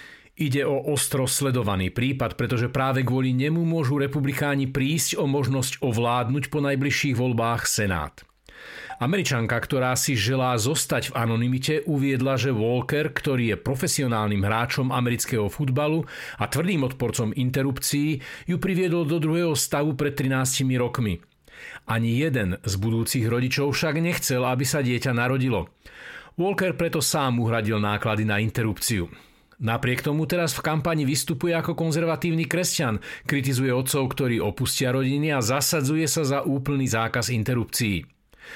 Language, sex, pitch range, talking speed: Slovak, male, 120-150 Hz, 135 wpm